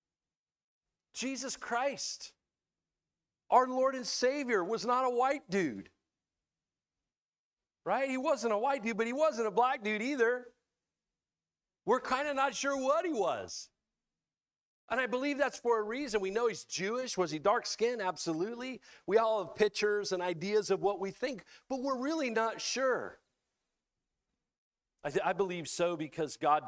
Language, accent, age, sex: English, American, 50-69, male